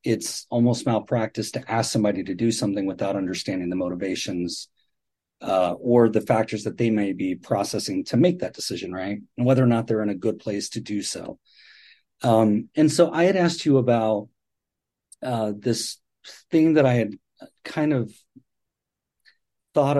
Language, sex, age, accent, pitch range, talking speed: English, male, 40-59, American, 110-140 Hz, 170 wpm